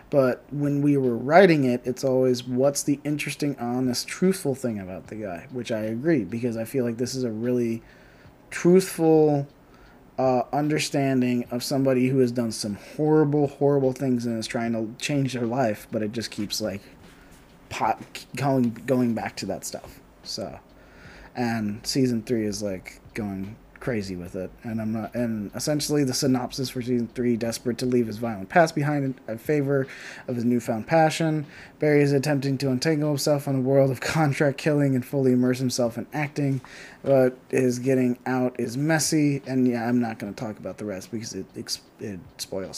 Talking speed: 185 wpm